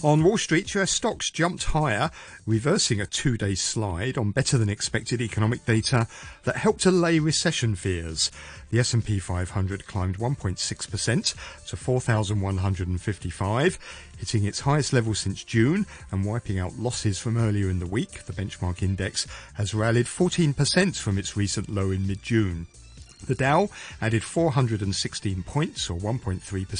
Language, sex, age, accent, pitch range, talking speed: English, male, 40-59, British, 95-135 Hz, 135 wpm